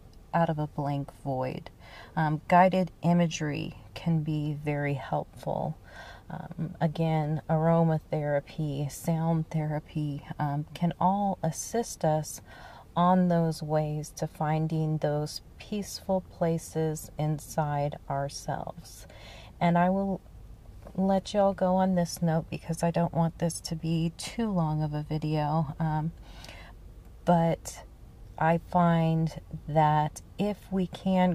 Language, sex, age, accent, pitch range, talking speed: English, female, 30-49, American, 150-170 Hz, 115 wpm